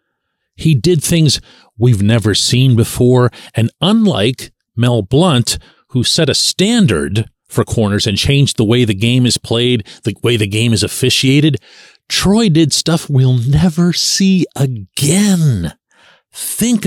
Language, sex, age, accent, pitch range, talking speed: English, male, 40-59, American, 120-180 Hz, 140 wpm